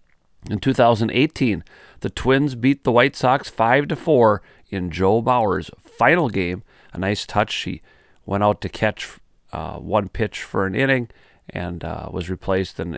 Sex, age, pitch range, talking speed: male, 40-59, 95-125 Hz, 155 wpm